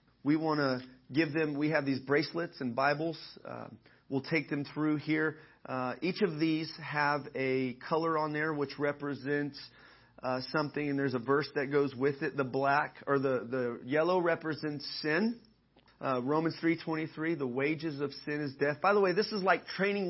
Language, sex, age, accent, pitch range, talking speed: English, male, 30-49, American, 140-170 Hz, 185 wpm